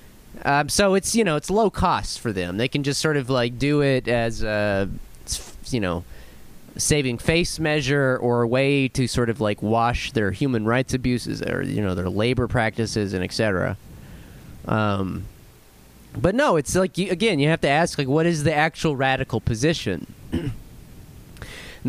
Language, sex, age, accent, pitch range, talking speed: English, male, 30-49, American, 130-210 Hz, 175 wpm